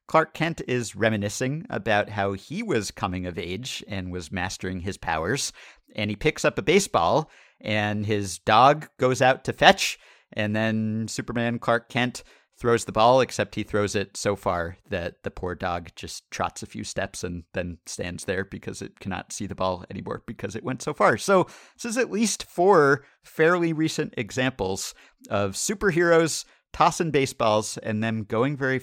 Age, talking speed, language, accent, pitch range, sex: 50-69, 175 wpm, English, American, 100-130 Hz, male